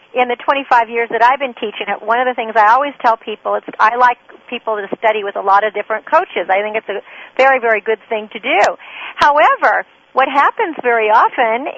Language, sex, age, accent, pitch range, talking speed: English, female, 50-69, American, 225-290 Hz, 220 wpm